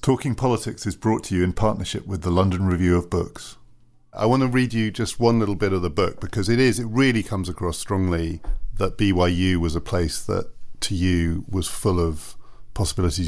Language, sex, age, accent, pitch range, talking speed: English, male, 40-59, British, 90-105 Hz, 210 wpm